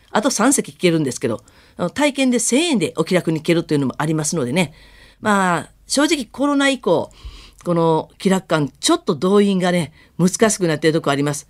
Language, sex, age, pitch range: Japanese, female, 40-59, 160-260 Hz